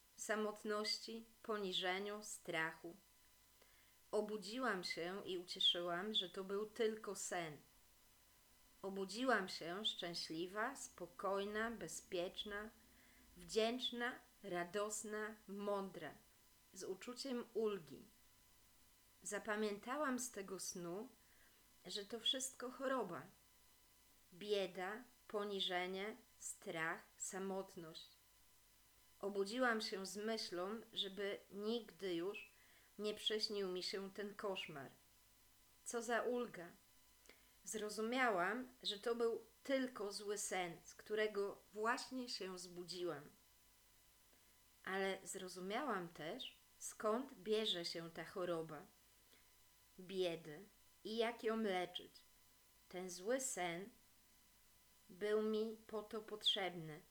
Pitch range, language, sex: 180-220 Hz, Polish, female